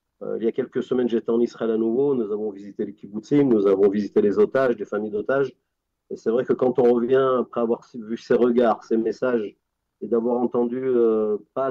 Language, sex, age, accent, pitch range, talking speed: French, male, 40-59, French, 115-130 Hz, 225 wpm